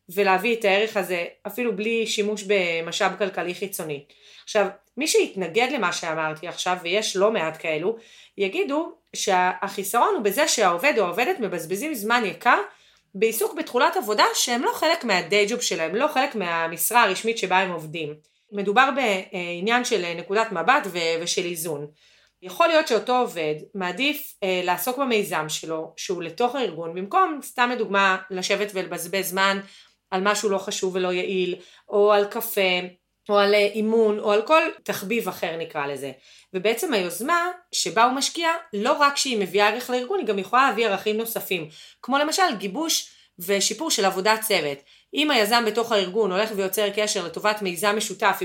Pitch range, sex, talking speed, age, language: 180-235 Hz, female, 150 wpm, 30-49, Hebrew